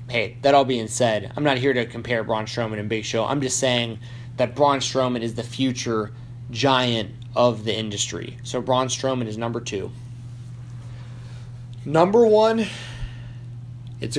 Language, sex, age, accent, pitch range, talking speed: English, male, 20-39, American, 120-135 Hz, 155 wpm